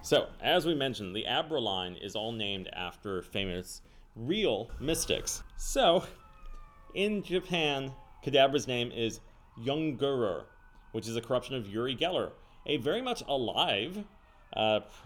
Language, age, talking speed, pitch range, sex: English, 30-49, 130 wpm, 100-135 Hz, male